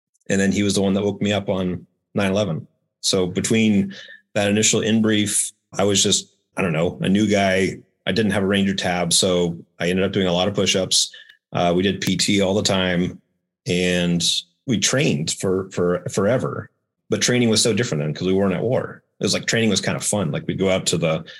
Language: English